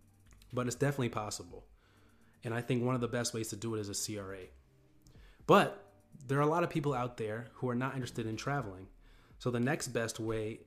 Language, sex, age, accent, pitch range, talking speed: English, male, 30-49, American, 110-120 Hz, 215 wpm